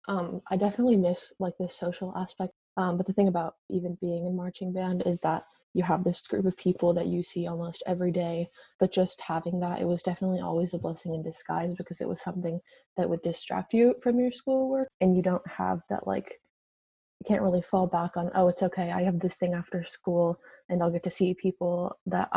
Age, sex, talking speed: 20-39, female, 225 wpm